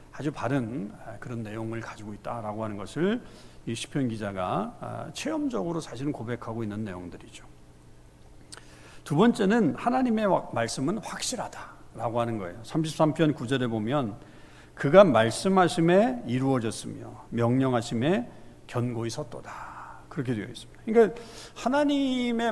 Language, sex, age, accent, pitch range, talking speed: English, male, 50-69, Korean, 115-185 Hz, 95 wpm